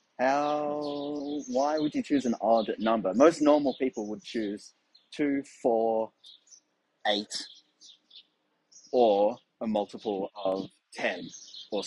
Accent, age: Australian, 30-49